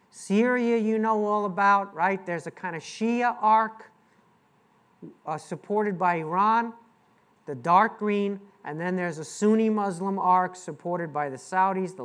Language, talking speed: English, 155 wpm